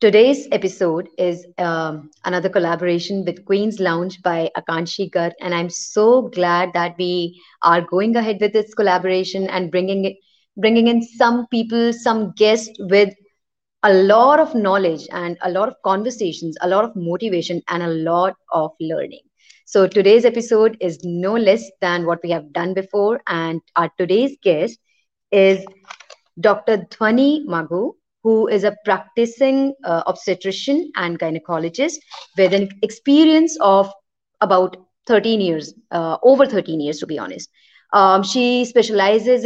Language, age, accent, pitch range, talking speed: English, 30-49, Indian, 180-225 Hz, 145 wpm